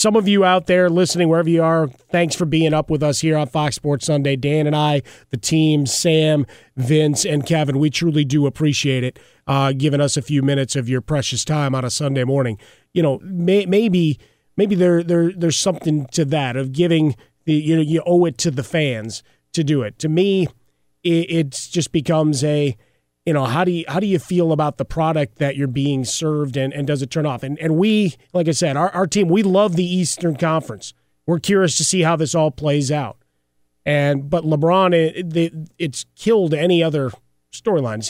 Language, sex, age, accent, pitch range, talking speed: English, male, 30-49, American, 140-175 Hz, 215 wpm